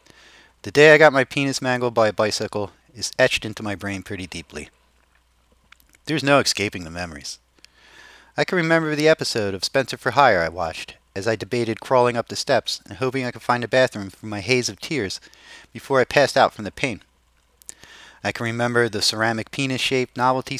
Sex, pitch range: male, 90-130 Hz